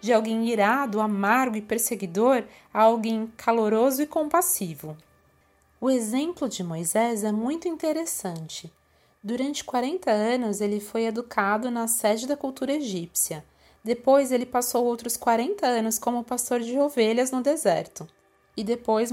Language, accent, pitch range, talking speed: Portuguese, Brazilian, 200-260 Hz, 135 wpm